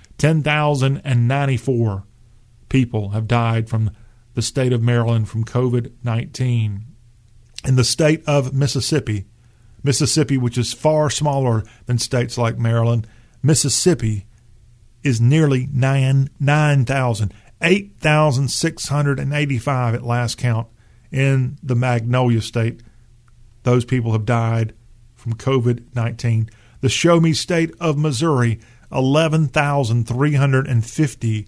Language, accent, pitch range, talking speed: English, American, 115-145 Hz, 110 wpm